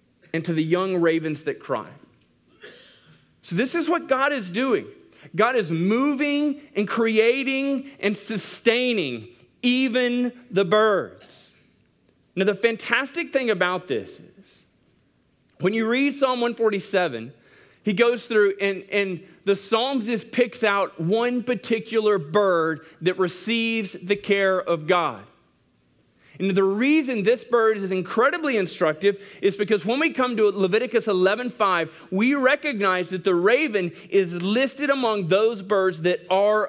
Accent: American